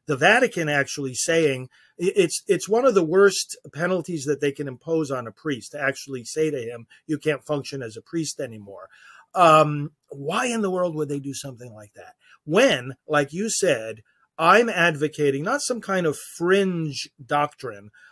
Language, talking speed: English, 175 wpm